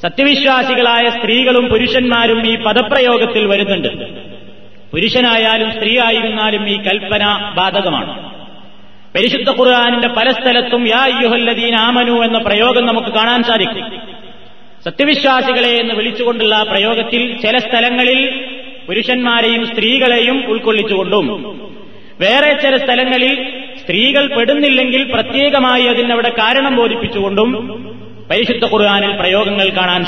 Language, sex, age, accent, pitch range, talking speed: Malayalam, male, 30-49, native, 220-250 Hz, 85 wpm